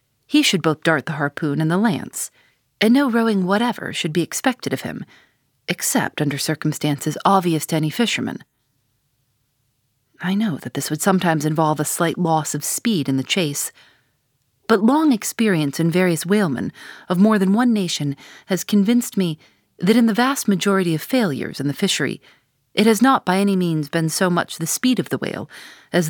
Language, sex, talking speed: English, female, 180 wpm